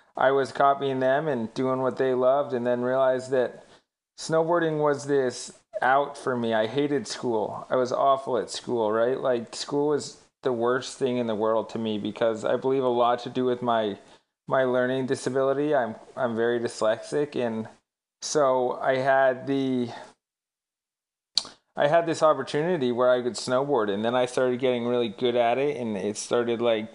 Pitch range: 115-135 Hz